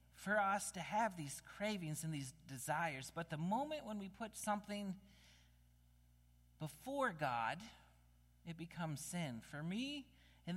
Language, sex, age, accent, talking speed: English, male, 40-59, American, 135 wpm